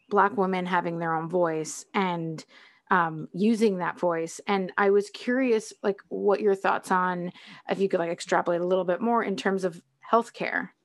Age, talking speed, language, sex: 20-39, 185 wpm, English, female